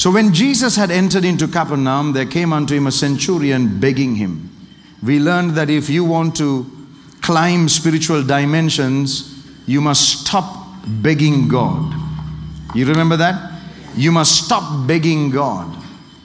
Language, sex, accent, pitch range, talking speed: English, male, Indian, 145-185 Hz, 140 wpm